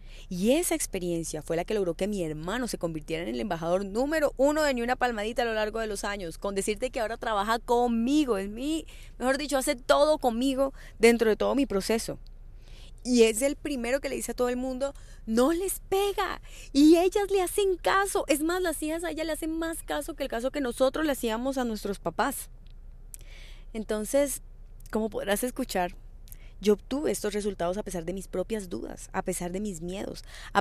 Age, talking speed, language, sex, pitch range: 20-39, 205 wpm, English, female, 185-260 Hz